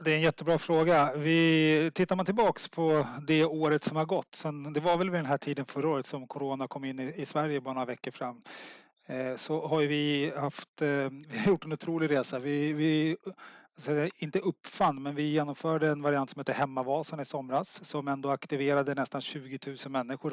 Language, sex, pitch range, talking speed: Swedish, male, 140-155 Hz, 195 wpm